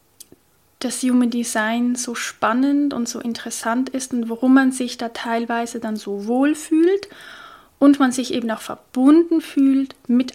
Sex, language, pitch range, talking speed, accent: female, German, 230-270 Hz, 155 wpm, German